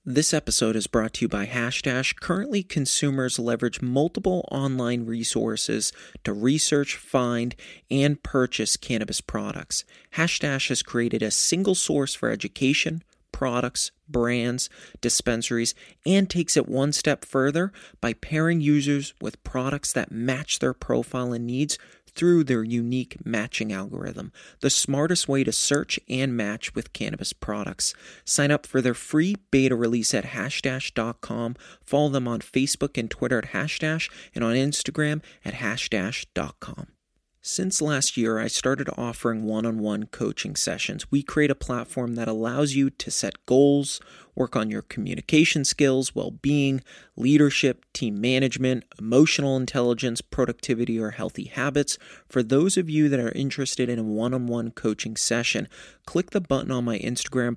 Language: English